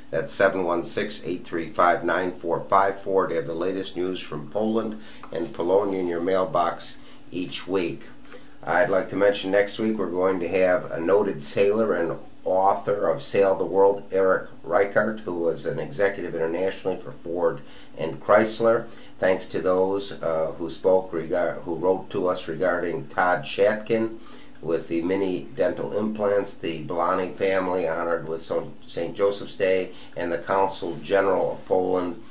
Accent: American